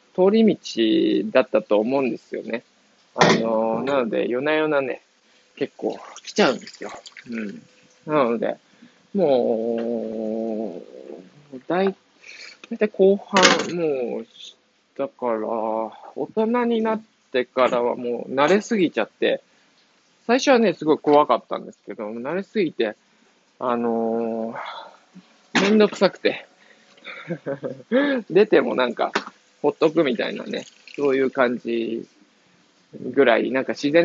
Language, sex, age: Japanese, male, 20-39